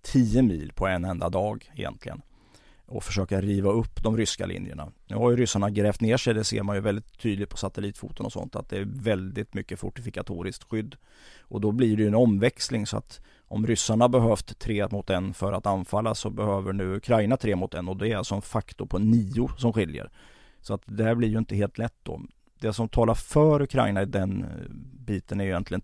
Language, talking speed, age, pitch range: Swedish, 220 wpm, 30-49, 95-120 Hz